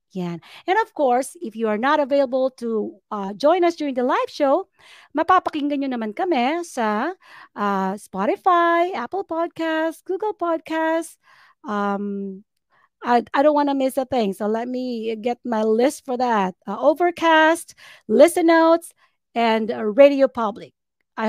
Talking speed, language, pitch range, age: 145 wpm, English, 215-275 Hz, 40-59